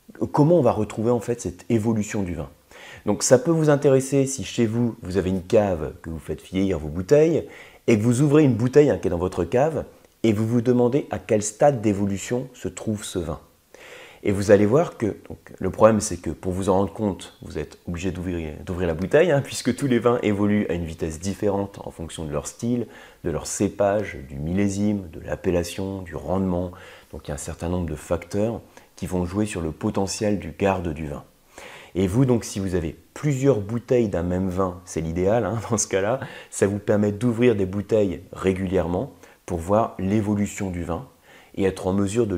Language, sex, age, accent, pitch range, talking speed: French, male, 30-49, French, 90-120 Hz, 210 wpm